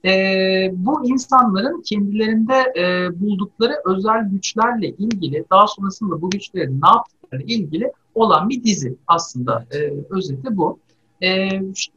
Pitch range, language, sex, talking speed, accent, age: 175-230 Hz, Turkish, male, 120 wpm, native, 60-79